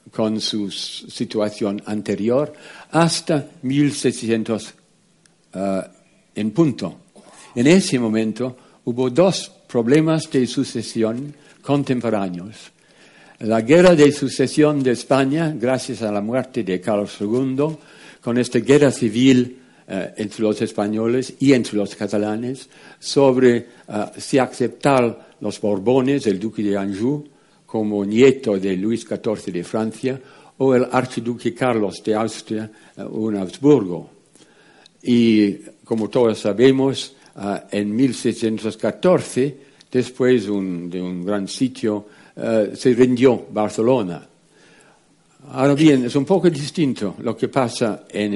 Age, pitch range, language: 60-79, 105-135 Hz, Spanish